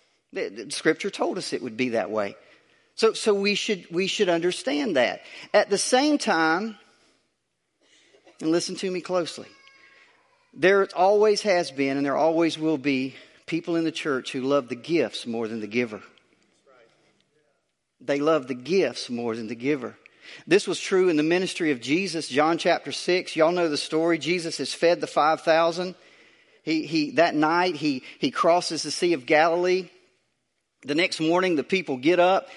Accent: American